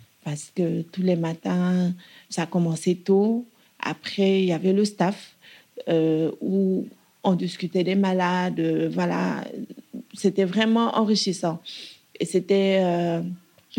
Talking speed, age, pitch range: 120 wpm, 40-59, 175-210 Hz